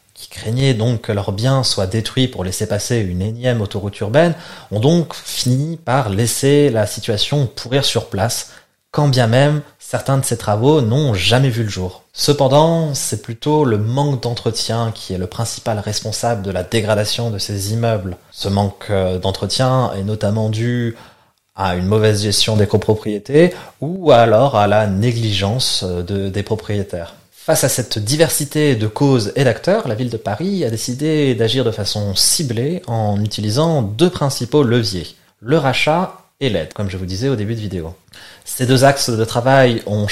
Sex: male